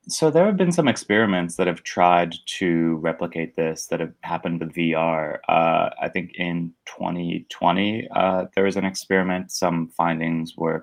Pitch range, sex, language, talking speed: 80-95 Hz, male, English, 165 wpm